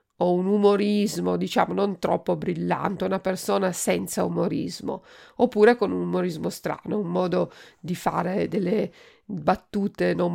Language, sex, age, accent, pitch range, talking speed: Italian, female, 50-69, native, 190-270 Hz, 135 wpm